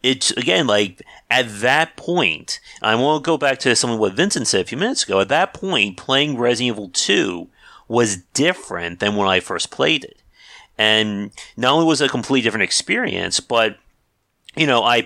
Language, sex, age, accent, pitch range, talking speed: English, male, 40-59, American, 105-135 Hz, 190 wpm